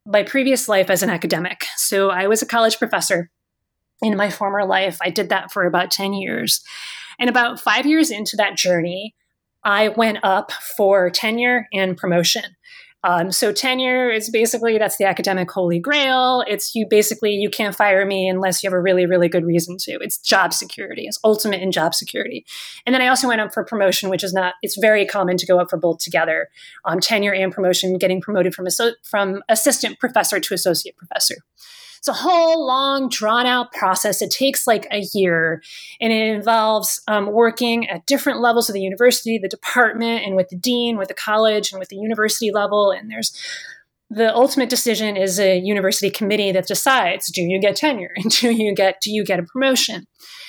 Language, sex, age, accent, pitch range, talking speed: English, female, 30-49, American, 190-240 Hz, 195 wpm